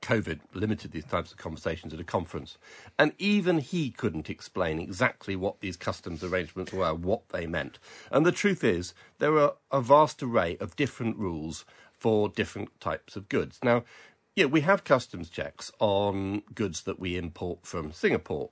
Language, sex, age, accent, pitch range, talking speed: English, male, 50-69, British, 85-120 Hz, 170 wpm